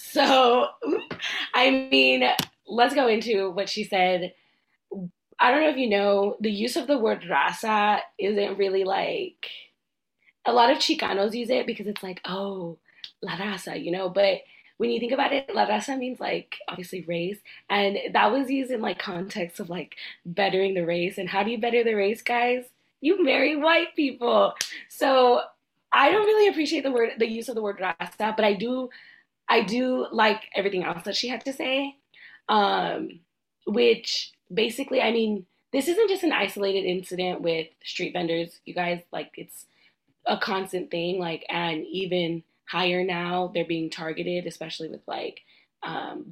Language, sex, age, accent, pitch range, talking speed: English, female, 20-39, American, 180-250 Hz, 170 wpm